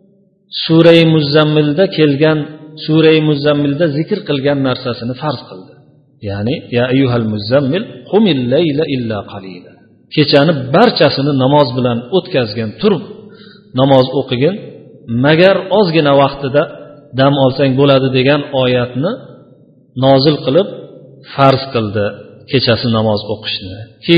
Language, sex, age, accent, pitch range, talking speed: Russian, male, 50-69, Turkish, 125-155 Hz, 100 wpm